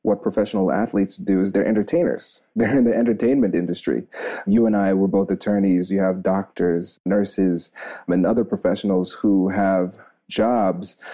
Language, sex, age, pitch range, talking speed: English, male, 30-49, 95-115 Hz, 150 wpm